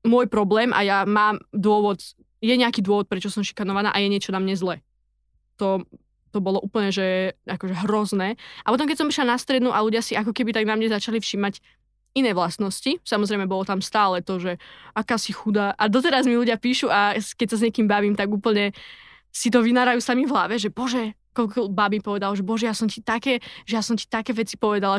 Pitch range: 195-230 Hz